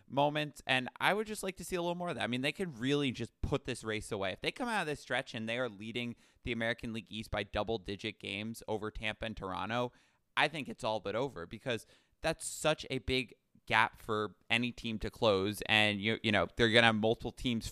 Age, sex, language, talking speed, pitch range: 20-39, male, English, 245 wpm, 105-125 Hz